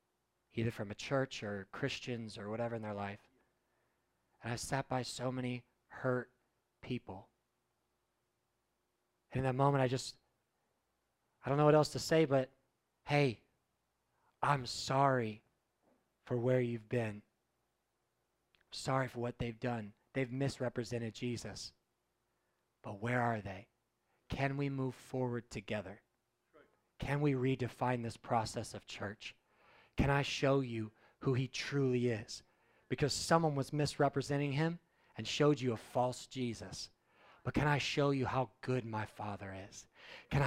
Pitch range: 115-145 Hz